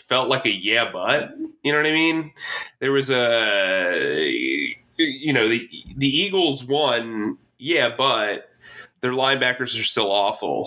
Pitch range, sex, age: 110-135 Hz, male, 20-39